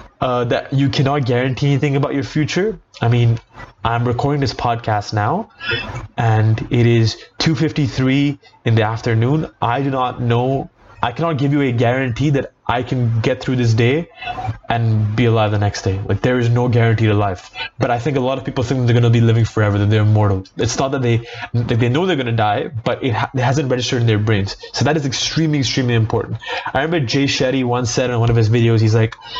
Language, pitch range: English, 115-140 Hz